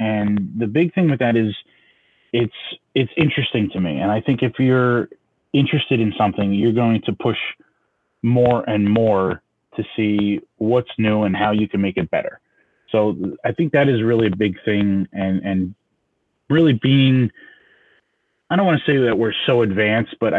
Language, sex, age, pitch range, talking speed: English, male, 30-49, 100-120 Hz, 180 wpm